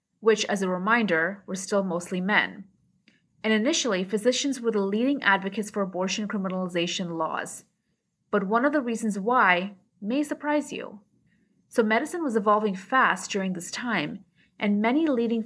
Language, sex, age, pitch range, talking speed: English, female, 30-49, 190-230 Hz, 150 wpm